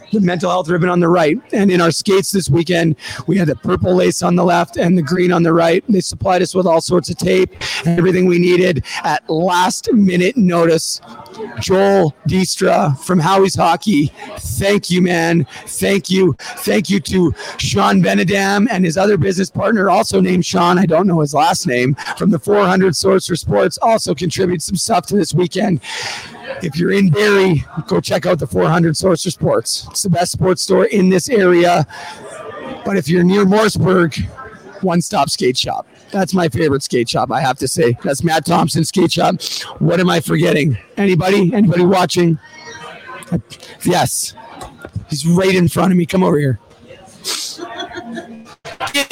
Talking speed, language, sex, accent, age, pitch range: 175 wpm, English, male, American, 40-59, 160-190 Hz